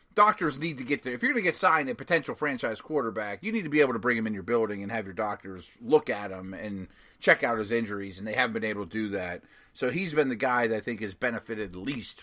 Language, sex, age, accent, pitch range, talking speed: English, male, 30-49, American, 110-180 Hz, 280 wpm